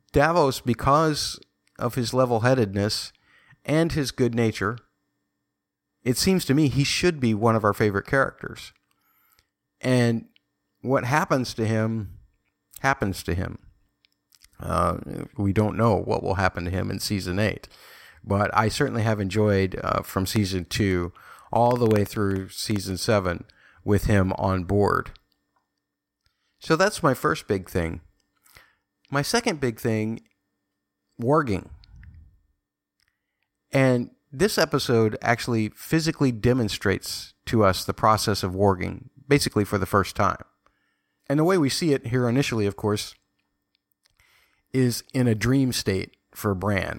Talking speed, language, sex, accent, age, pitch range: 135 wpm, English, male, American, 50-69, 95-125 Hz